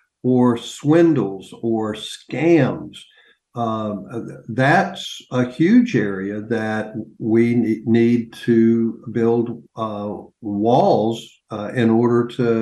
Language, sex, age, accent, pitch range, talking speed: English, male, 50-69, American, 115-145 Hz, 95 wpm